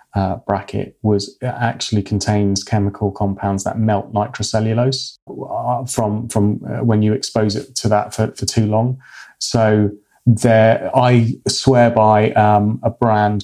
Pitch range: 100-115 Hz